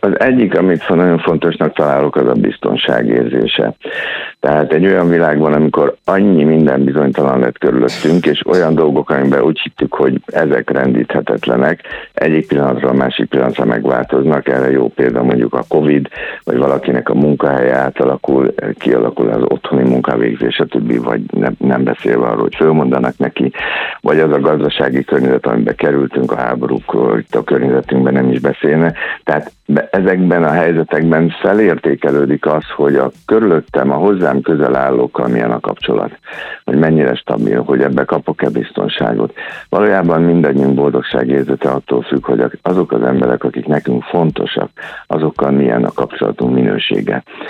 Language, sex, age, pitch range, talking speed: Hungarian, male, 60-79, 65-80 Hz, 145 wpm